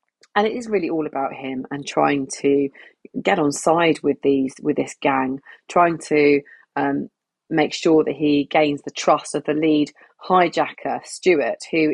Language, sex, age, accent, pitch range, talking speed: English, female, 30-49, British, 155-205 Hz, 170 wpm